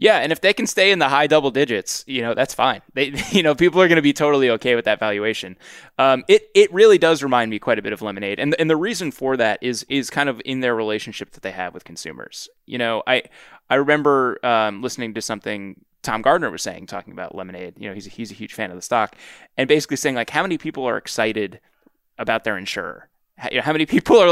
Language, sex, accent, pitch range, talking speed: English, male, American, 100-140 Hz, 250 wpm